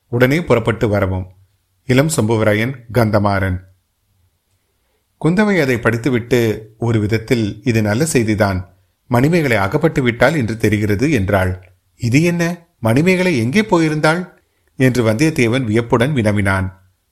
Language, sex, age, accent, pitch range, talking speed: Tamil, male, 30-49, native, 105-130 Hz, 100 wpm